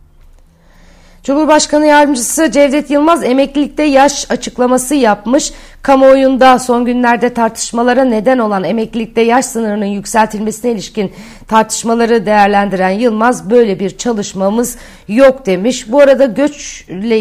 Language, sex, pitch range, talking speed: Turkish, female, 210-255 Hz, 105 wpm